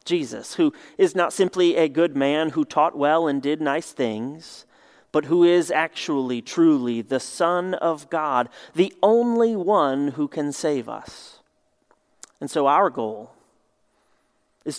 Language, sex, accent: English, male, American